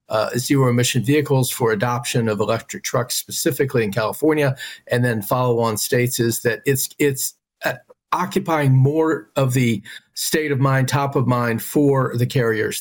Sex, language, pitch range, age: male, English, 125-155 Hz, 50-69